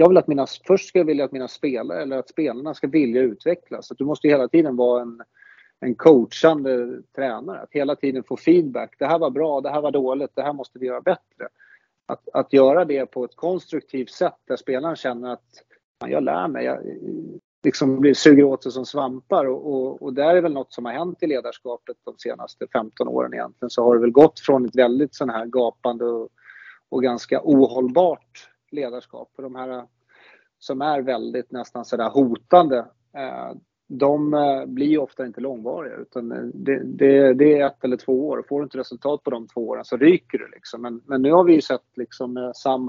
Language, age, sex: Swedish, 30-49, male